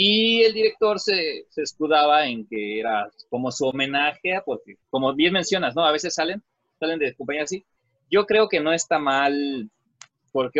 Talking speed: 180 wpm